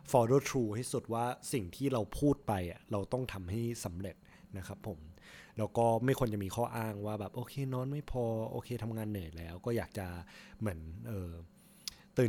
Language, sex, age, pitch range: Thai, male, 20-39, 95-120 Hz